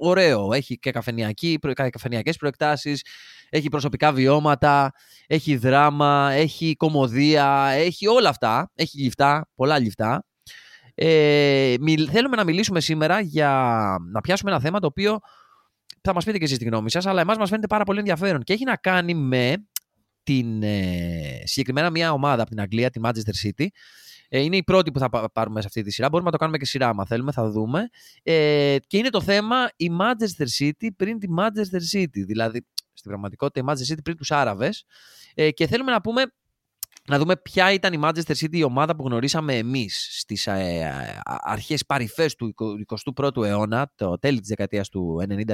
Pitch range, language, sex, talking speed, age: 115-160 Hz, Greek, male, 175 wpm, 20-39